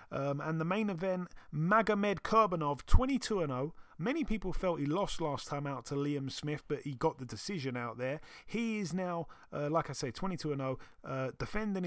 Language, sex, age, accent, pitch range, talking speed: English, male, 30-49, British, 135-175 Hz, 185 wpm